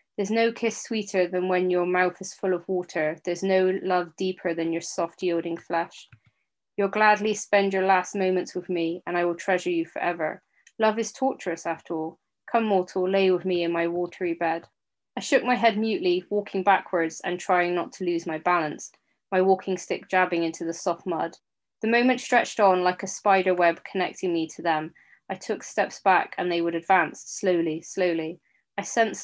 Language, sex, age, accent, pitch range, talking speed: English, female, 20-39, British, 170-205 Hz, 195 wpm